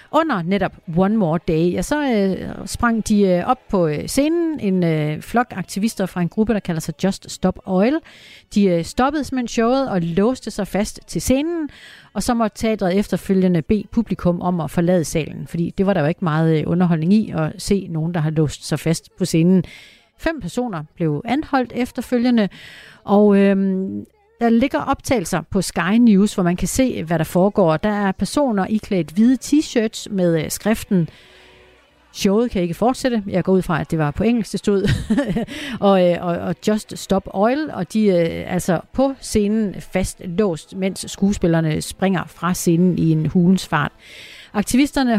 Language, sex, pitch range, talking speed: Danish, female, 175-225 Hz, 185 wpm